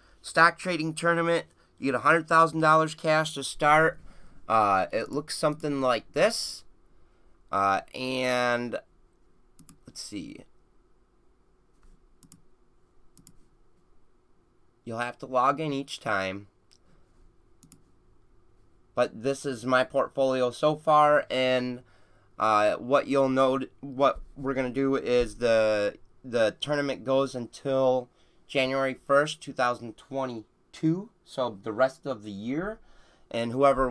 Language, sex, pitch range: English, male, 125-160 Hz